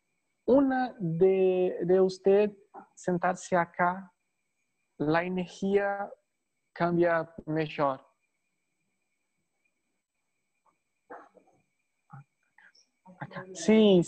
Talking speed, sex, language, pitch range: 45 wpm, male, Portuguese, 150-190 Hz